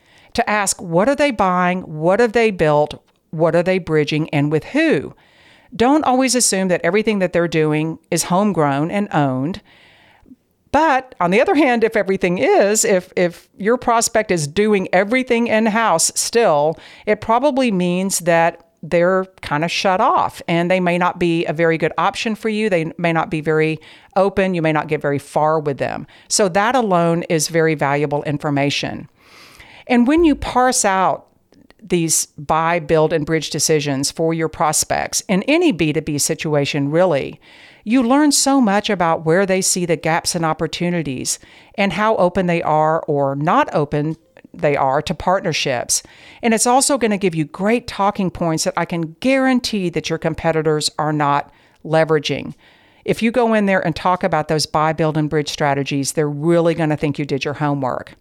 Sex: female